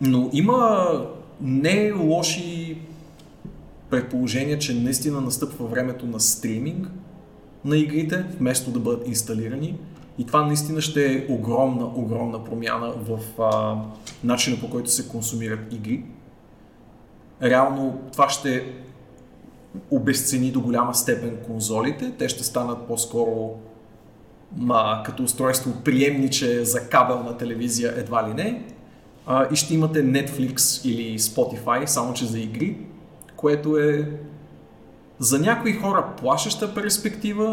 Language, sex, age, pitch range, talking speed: Bulgarian, male, 20-39, 120-150 Hz, 115 wpm